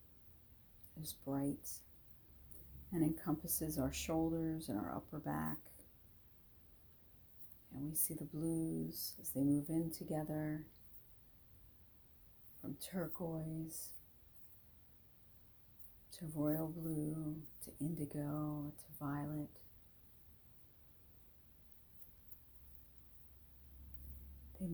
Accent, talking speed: American, 75 wpm